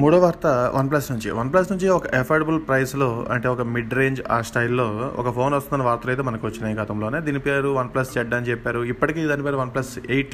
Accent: native